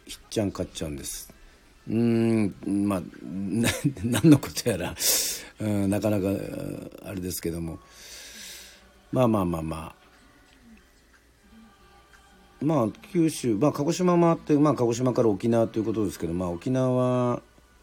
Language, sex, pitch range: Japanese, male, 90-120 Hz